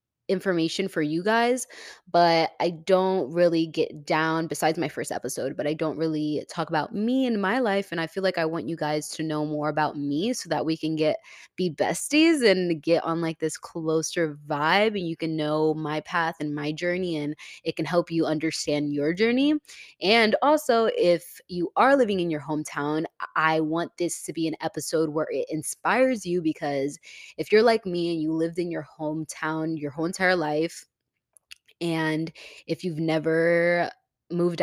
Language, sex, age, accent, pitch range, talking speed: English, female, 20-39, American, 155-175 Hz, 185 wpm